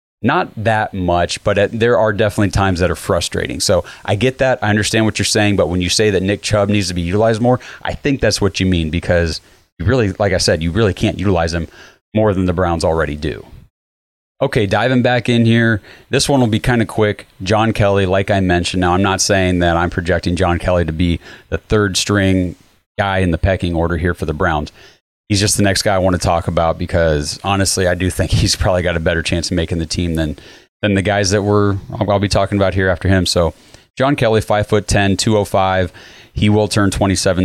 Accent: American